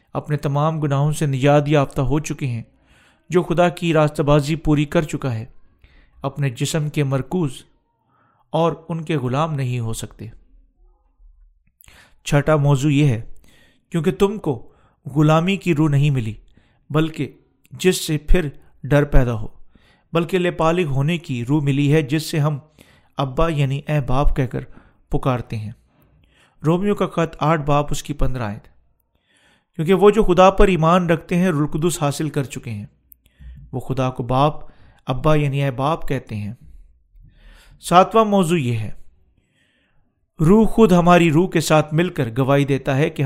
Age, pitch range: 40-59, 130-165 Hz